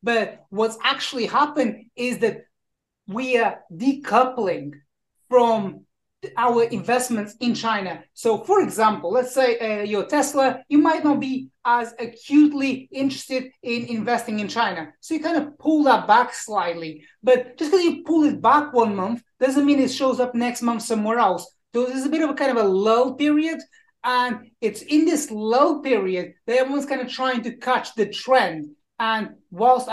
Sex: male